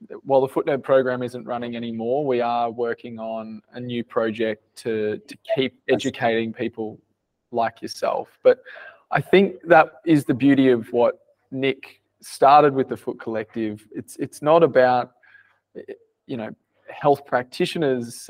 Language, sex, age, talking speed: English, male, 20-39, 145 wpm